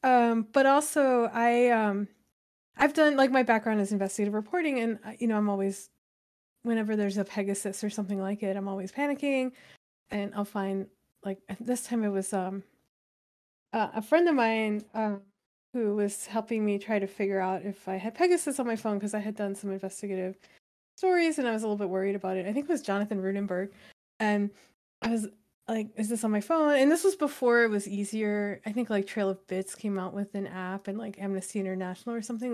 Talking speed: 210 wpm